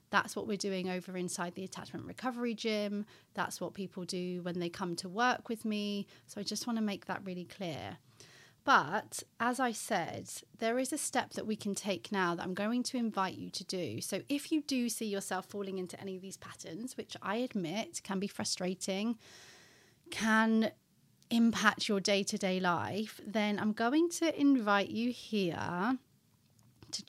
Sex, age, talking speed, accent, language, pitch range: female, 30-49, 180 wpm, British, English, 185-230 Hz